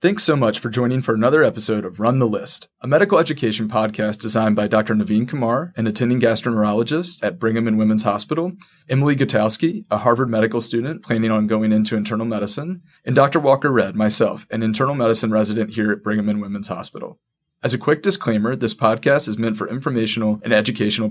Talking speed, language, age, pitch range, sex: 195 wpm, English, 30-49, 110-130 Hz, male